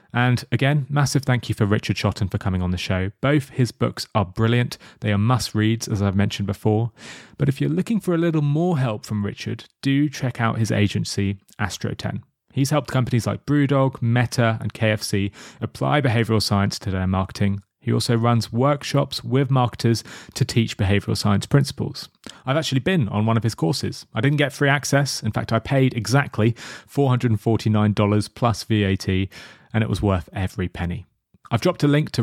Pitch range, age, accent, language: 105-135 Hz, 30-49, British, English